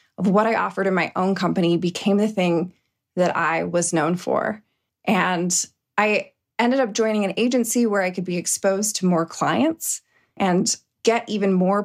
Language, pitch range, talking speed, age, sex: English, 185-230 Hz, 175 wpm, 20-39, female